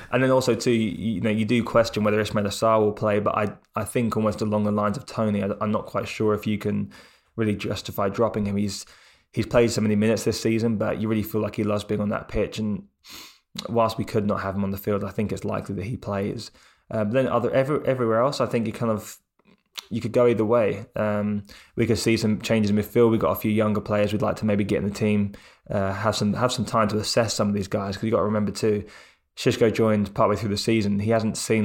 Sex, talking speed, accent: male, 265 wpm, British